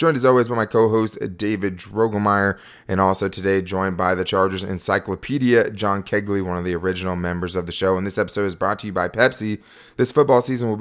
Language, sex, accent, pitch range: English, male, American, 95-115 Hz